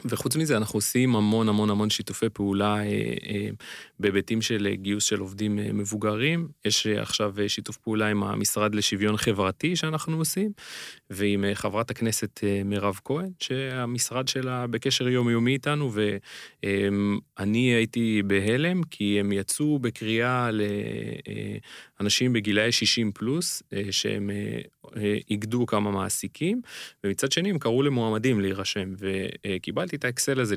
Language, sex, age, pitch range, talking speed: Hebrew, male, 30-49, 100-125 Hz, 145 wpm